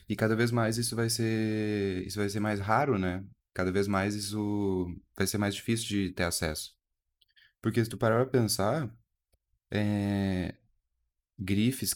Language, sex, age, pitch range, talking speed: Portuguese, male, 20-39, 90-110 Hz, 145 wpm